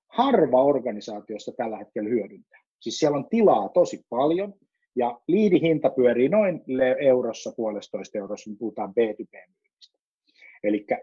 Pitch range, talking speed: 105-165 Hz, 120 wpm